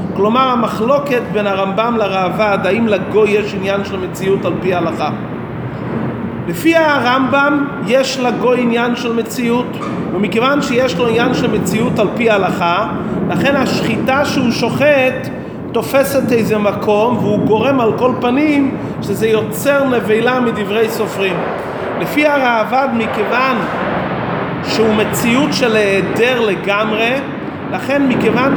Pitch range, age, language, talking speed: 195-255 Hz, 40-59, English, 115 wpm